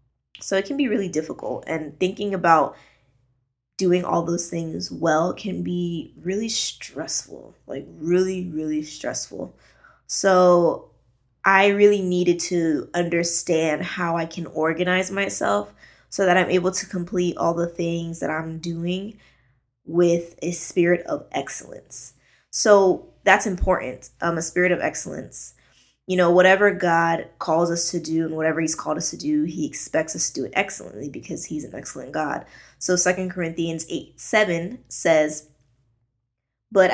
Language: English